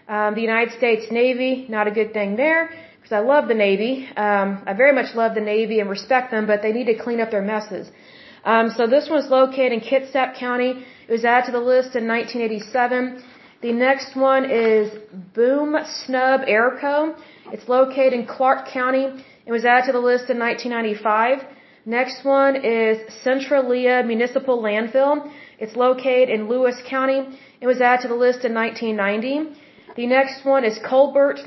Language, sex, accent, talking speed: Hindi, female, American, 175 wpm